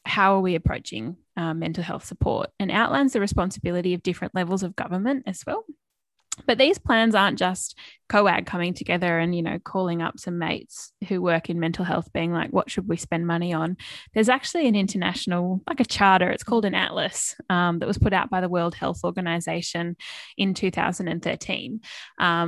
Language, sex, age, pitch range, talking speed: English, female, 10-29, 175-200 Hz, 185 wpm